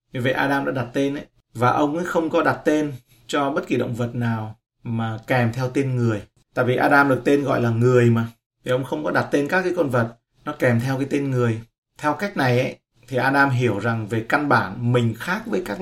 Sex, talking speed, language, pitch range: male, 245 wpm, Vietnamese, 115-140 Hz